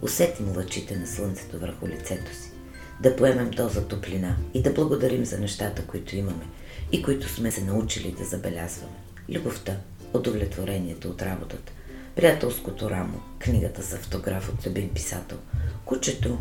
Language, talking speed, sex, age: Bulgarian, 140 wpm, female, 40-59